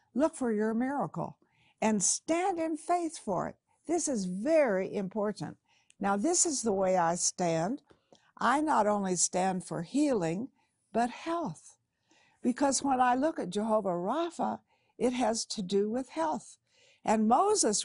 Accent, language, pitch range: American, English, 195-270 Hz